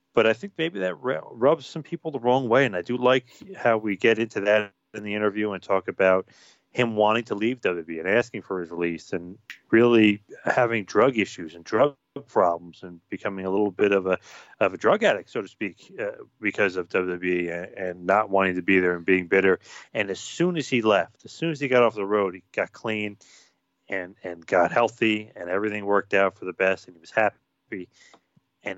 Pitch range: 95-120 Hz